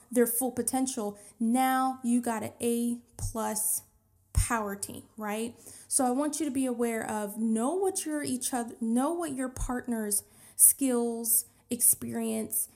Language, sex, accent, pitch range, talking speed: English, female, American, 215-255 Hz, 145 wpm